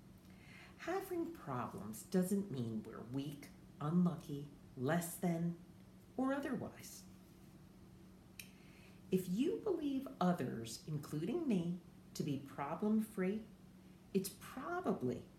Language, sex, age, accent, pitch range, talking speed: English, female, 50-69, American, 180-275 Hz, 85 wpm